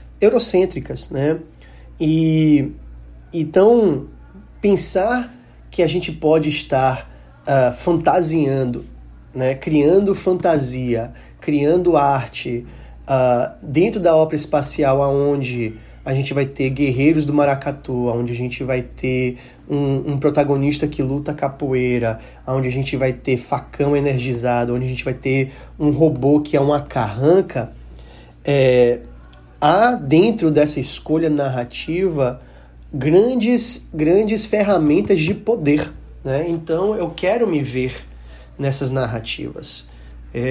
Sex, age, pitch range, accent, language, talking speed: male, 20-39, 125-160 Hz, Brazilian, Portuguese, 115 wpm